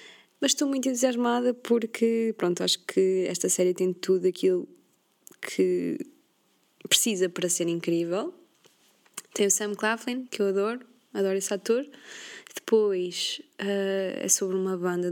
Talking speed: 130 wpm